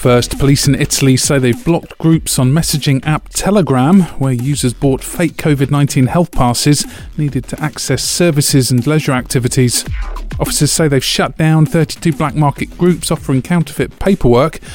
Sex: male